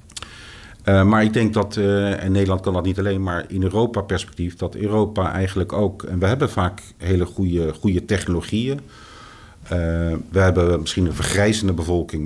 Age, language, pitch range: 50-69, Dutch, 85-105 Hz